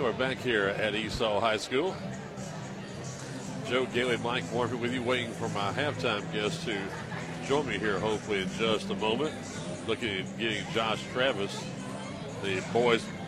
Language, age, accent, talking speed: English, 50-69, American, 155 wpm